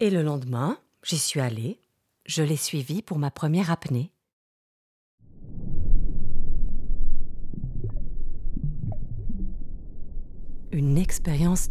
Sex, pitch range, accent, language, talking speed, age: female, 115-170 Hz, French, French, 75 wpm, 40-59